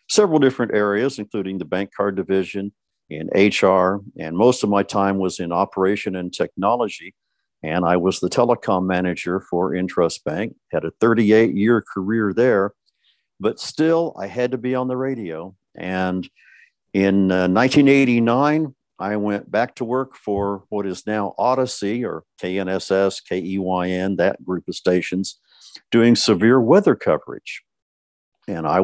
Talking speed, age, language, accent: 145 wpm, 50-69, English, American